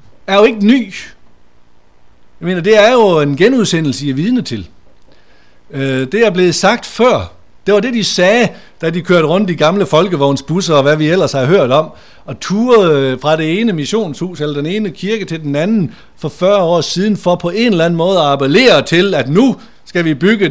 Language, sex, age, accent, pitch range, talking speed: Danish, male, 60-79, native, 135-195 Hz, 205 wpm